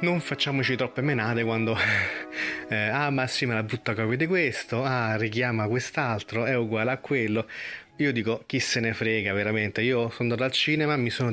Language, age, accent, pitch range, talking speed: Italian, 30-49, native, 110-130 Hz, 175 wpm